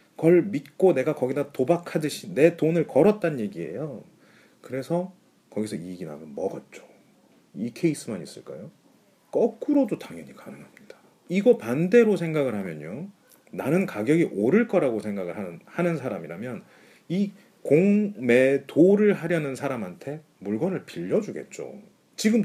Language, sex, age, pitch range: Korean, male, 40-59, 140-190 Hz